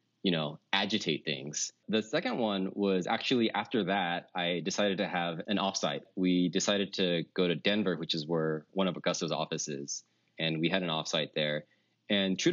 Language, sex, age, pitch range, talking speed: English, male, 20-39, 85-105 Hz, 185 wpm